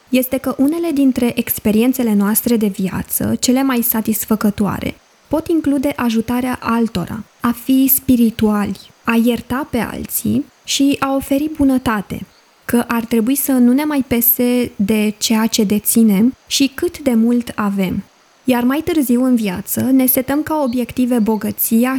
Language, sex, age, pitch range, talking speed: Romanian, female, 20-39, 215-265 Hz, 145 wpm